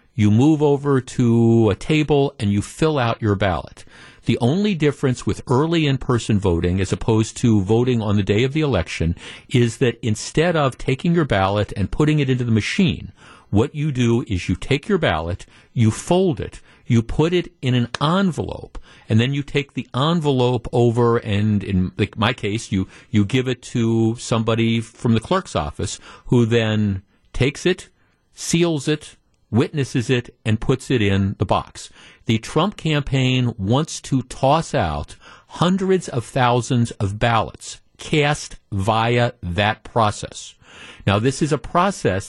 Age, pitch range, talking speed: 50-69, 110-140 Hz, 165 wpm